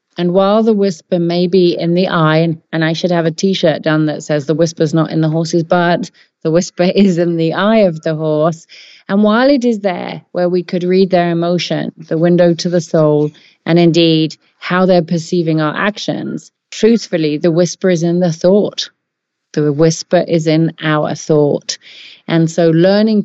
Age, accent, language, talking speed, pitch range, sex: 40-59, British, English, 190 wpm, 160-180 Hz, female